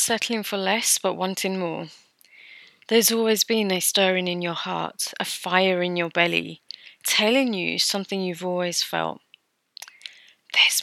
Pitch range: 185-220 Hz